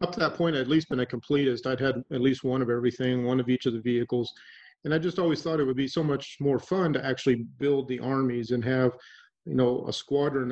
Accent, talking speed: American, 265 wpm